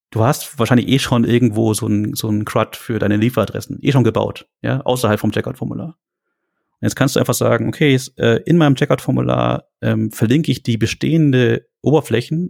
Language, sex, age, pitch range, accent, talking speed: German, male, 40-59, 105-130 Hz, German, 175 wpm